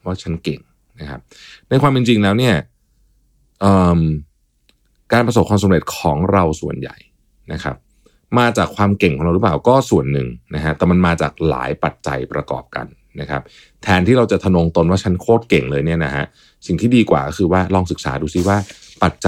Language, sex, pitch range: Thai, male, 80-100 Hz